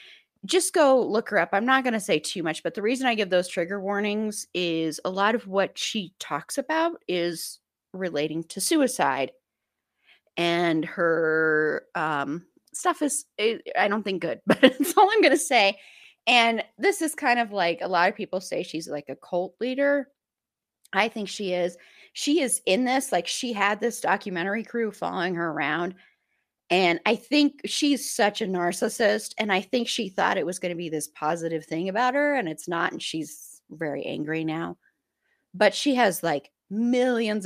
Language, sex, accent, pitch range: English, female, American, 170-245 Hz